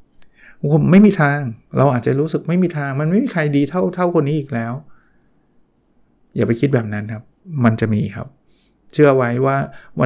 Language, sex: Thai, male